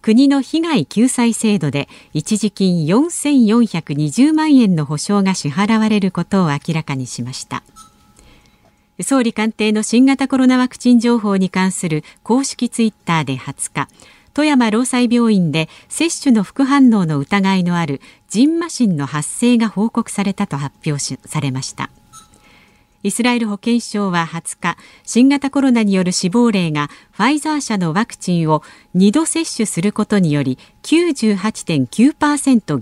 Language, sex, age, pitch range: Japanese, female, 50-69, 165-255 Hz